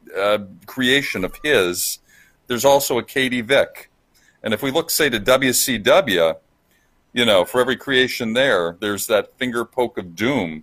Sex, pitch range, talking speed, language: male, 95-125 Hz, 160 wpm, English